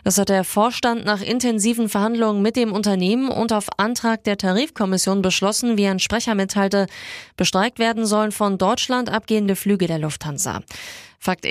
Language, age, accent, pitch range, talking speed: German, 20-39, German, 195-225 Hz, 155 wpm